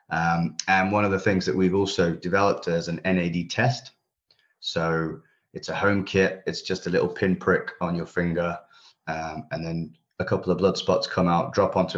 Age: 30-49